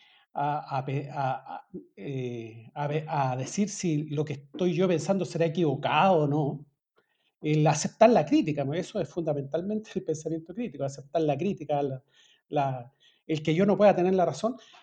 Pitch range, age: 150-200 Hz, 40-59